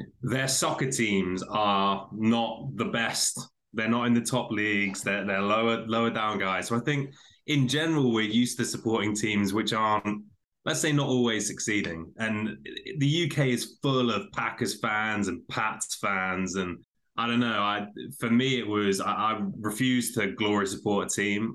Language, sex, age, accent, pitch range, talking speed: English, male, 20-39, British, 105-130 Hz, 180 wpm